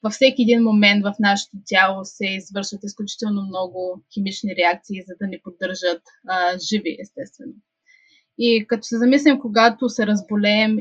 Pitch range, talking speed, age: 195-235 Hz, 150 wpm, 20-39